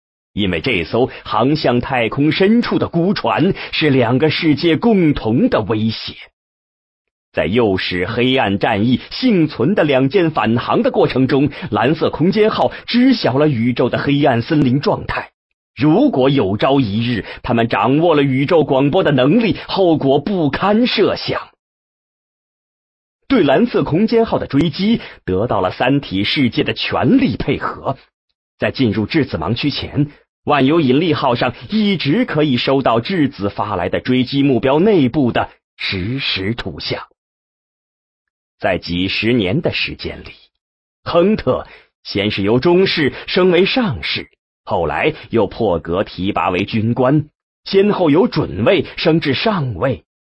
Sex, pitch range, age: male, 110-165 Hz, 40-59